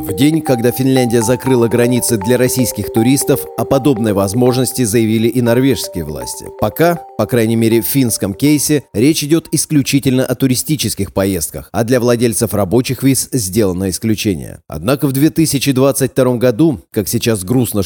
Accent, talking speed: native, 145 wpm